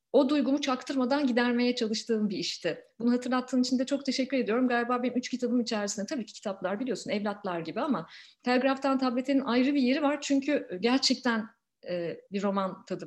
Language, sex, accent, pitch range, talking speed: Turkish, female, native, 185-255 Hz, 175 wpm